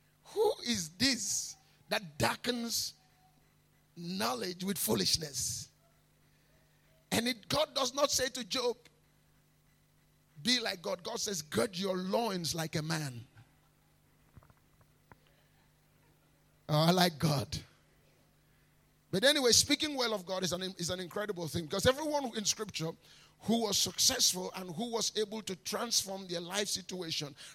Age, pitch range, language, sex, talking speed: 50-69, 165-230 Hz, English, male, 120 wpm